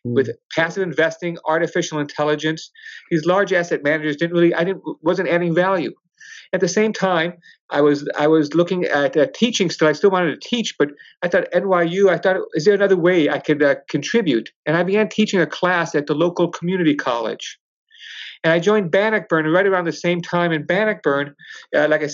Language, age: English, 50-69